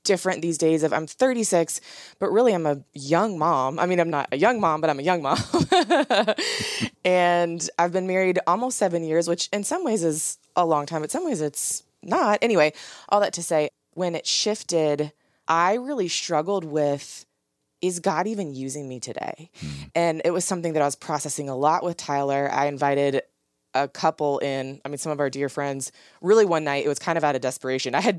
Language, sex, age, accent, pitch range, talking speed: English, female, 20-39, American, 140-180 Hz, 210 wpm